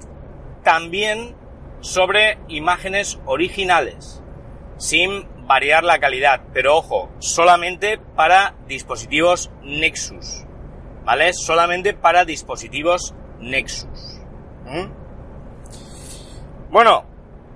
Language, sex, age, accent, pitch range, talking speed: Spanish, male, 40-59, Spanish, 130-185 Hz, 70 wpm